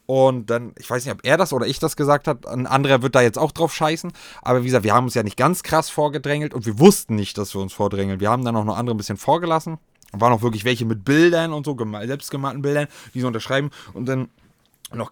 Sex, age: male, 20-39